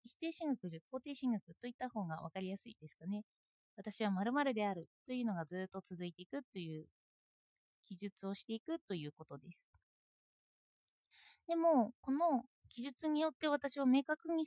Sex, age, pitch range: female, 20-39, 205-310 Hz